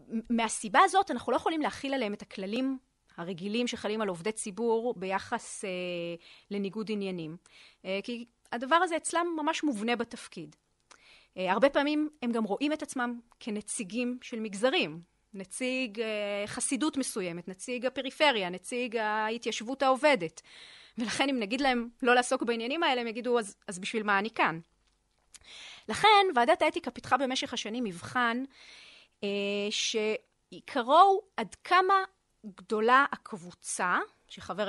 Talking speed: 130 wpm